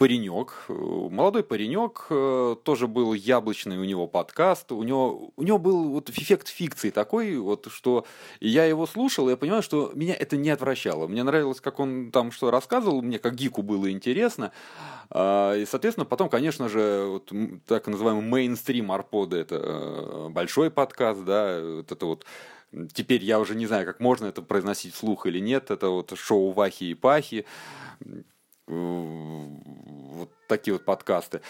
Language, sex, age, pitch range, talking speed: Russian, male, 30-49, 105-140 Hz, 160 wpm